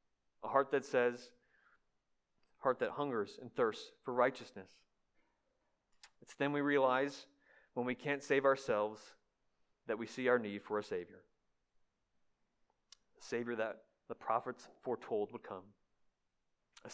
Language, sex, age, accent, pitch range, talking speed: English, male, 30-49, American, 115-145 Hz, 130 wpm